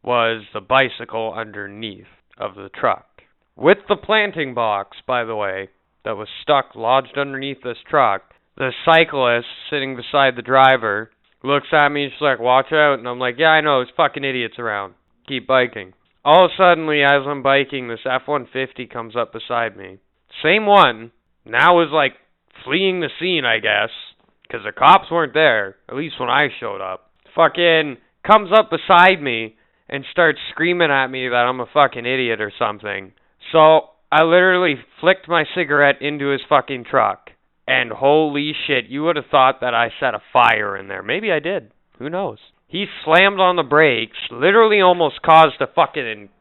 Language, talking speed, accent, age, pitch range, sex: English, 175 wpm, American, 20-39, 115-160 Hz, male